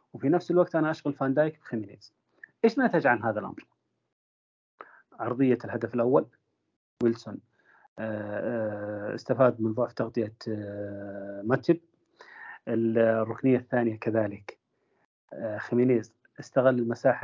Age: 30-49